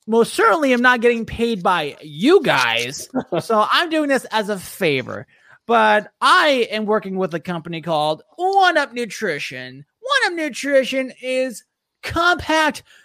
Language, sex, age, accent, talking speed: English, male, 20-39, American, 145 wpm